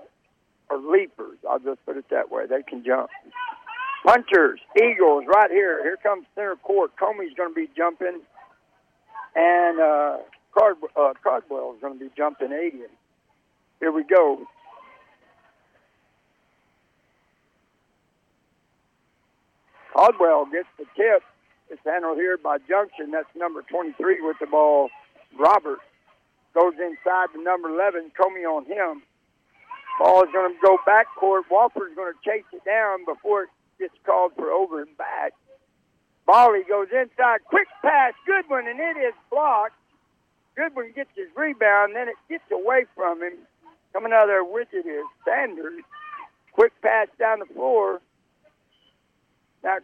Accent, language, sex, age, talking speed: American, English, male, 60-79, 140 wpm